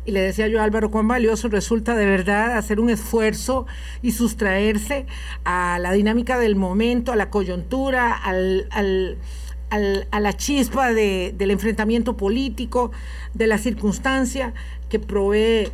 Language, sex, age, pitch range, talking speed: Spanish, female, 50-69, 185-235 Hz, 145 wpm